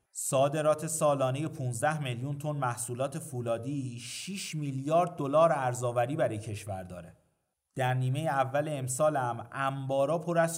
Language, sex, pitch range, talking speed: Persian, male, 125-165 Hz, 120 wpm